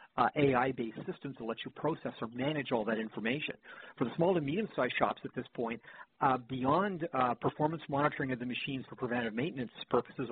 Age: 50-69